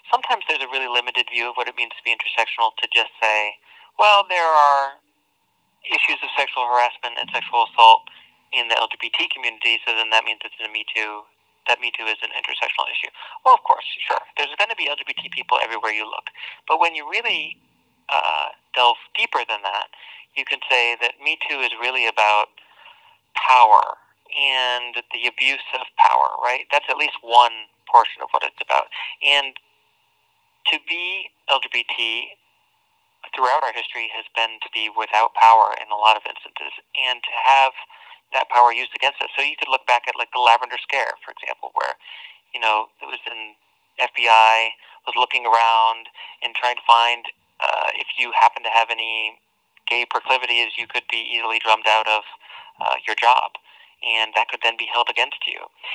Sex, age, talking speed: male, 40-59, 180 wpm